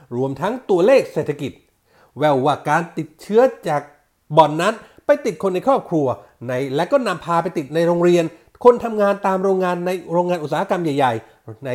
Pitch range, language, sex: 150-230 Hz, Thai, male